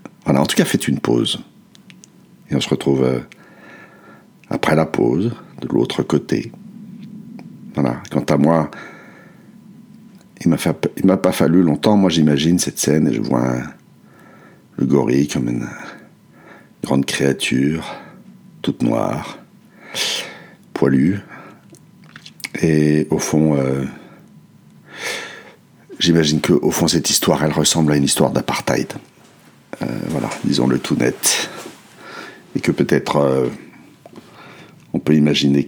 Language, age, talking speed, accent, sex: French, 60-79, 125 wpm, French, male